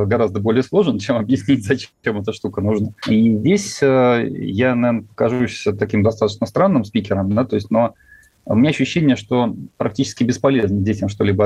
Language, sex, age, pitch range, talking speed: Russian, male, 30-49, 105-115 Hz, 160 wpm